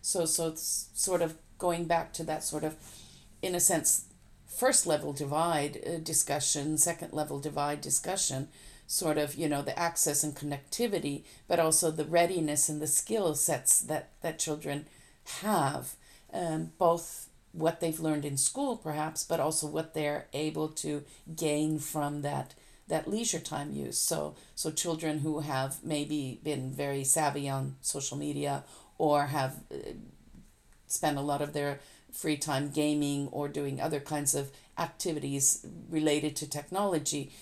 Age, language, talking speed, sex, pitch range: 50-69, English, 150 wpm, female, 145-165 Hz